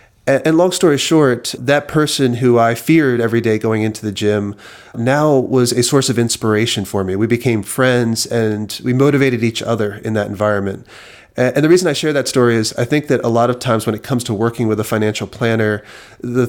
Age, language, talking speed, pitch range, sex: 30-49, English, 215 wpm, 110-130 Hz, male